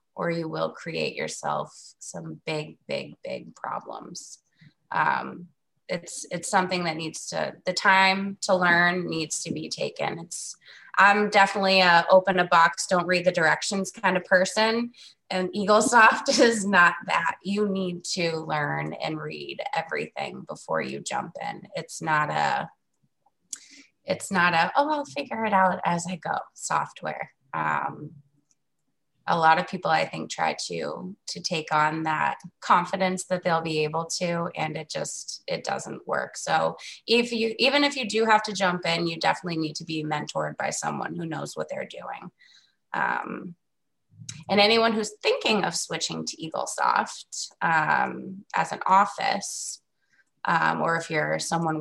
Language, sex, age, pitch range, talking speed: English, female, 20-39, 160-195 Hz, 160 wpm